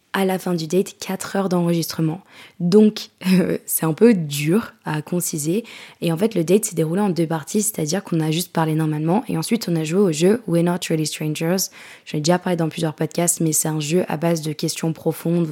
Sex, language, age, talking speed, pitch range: female, French, 20-39, 235 wpm, 165-190 Hz